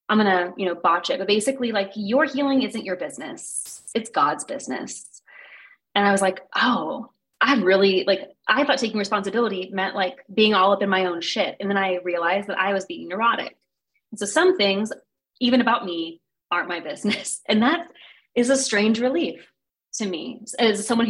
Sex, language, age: female, English, 20-39